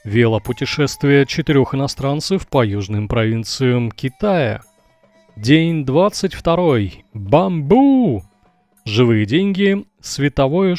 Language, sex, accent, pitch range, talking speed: Russian, male, native, 110-165 Hz, 80 wpm